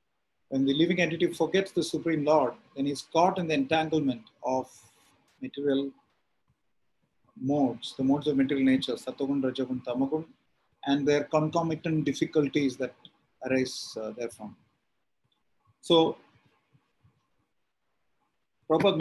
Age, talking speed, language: 30-49, 110 wpm, English